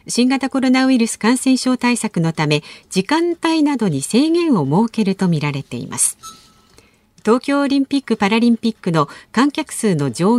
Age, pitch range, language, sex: 50-69, 165-270 Hz, Japanese, female